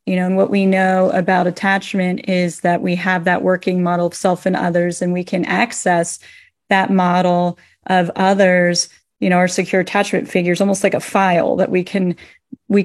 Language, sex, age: English, female, 30-49